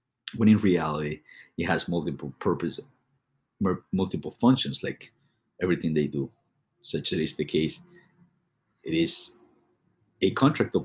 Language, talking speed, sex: English, 120 wpm, male